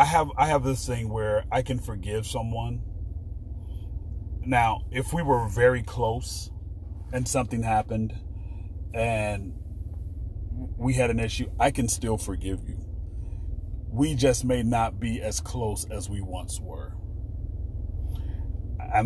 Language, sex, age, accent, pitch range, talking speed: English, male, 30-49, American, 90-115 Hz, 130 wpm